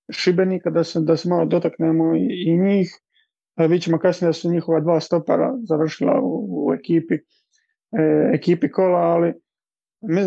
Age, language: 30-49, Croatian